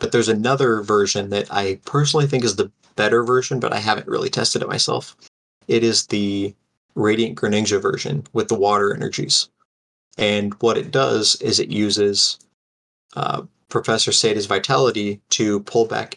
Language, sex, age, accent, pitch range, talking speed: English, male, 30-49, American, 100-115 Hz, 160 wpm